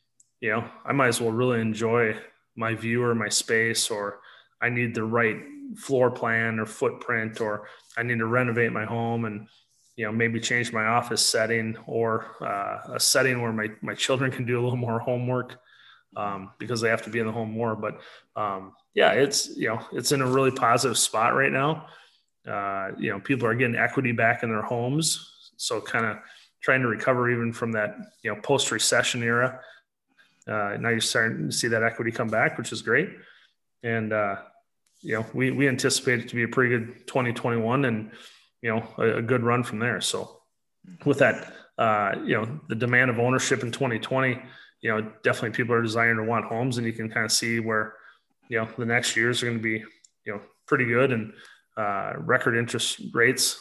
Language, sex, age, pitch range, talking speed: English, male, 20-39, 110-125 Hz, 205 wpm